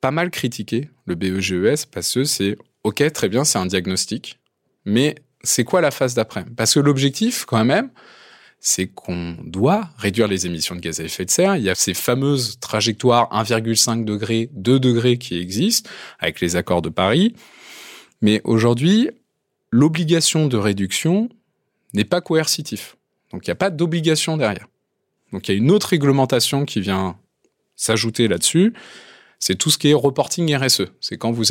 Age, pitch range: 20-39, 100-155 Hz